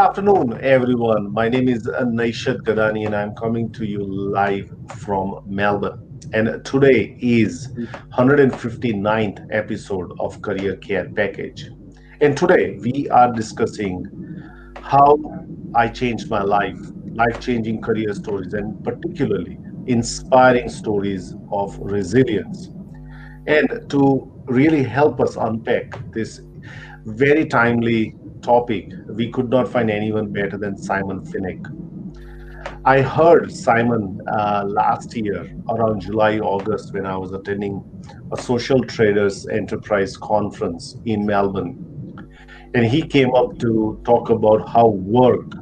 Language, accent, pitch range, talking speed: English, Indian, 105-130 Hz, 120 wpm